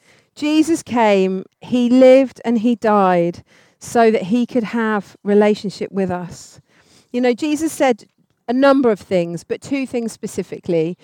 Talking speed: 145 wpm